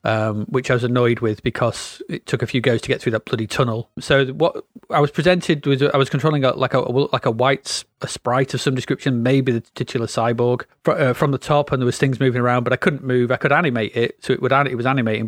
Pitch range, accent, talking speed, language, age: 120-145 Hz, British, 265 wpm, English, 30-49